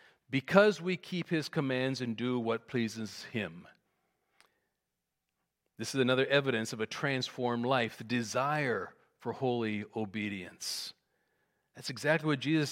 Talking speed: 125 wpm